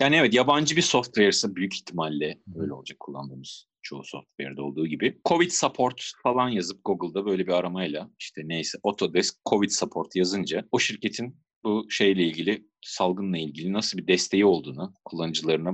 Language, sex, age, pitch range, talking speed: Turkish, male, 40-59, 85-115 Hz, 155 wpm